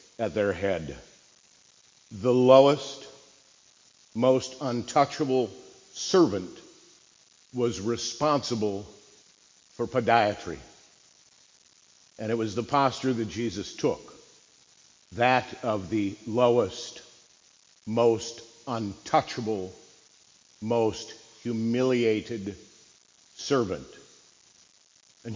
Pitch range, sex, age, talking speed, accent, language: 115-140 Hz, male, 50-69, 70 wpm, American, English